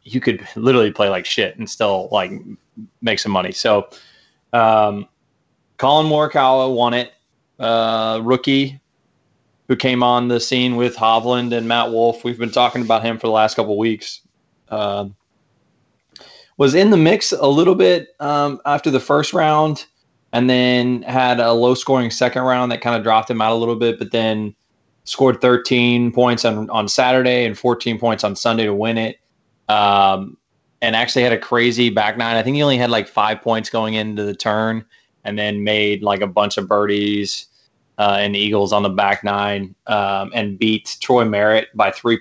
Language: English